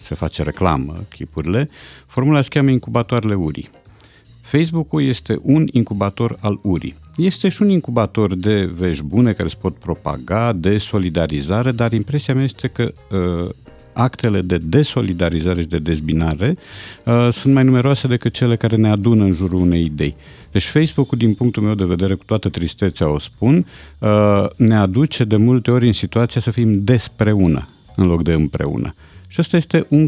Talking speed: 170 wpm